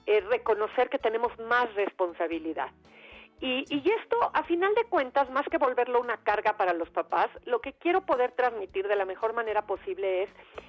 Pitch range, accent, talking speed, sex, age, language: 210-290 Hz, Mexican, 180 wpm, female, 40-59, Spanish